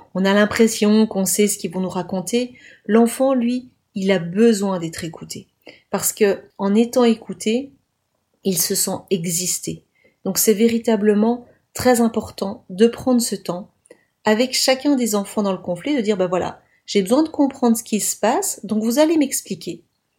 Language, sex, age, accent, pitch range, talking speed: French, female, 30-49, French, 190-250 Hz, 170 wpm